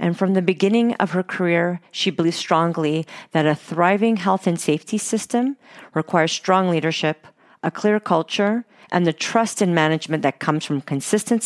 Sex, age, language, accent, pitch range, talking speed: female, 40-59, English, American, 160-210 Hz, 170 wpm